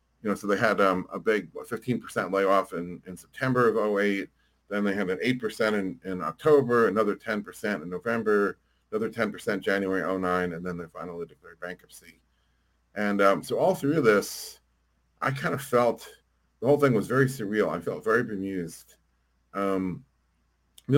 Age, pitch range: 40-59, 85-110 Hz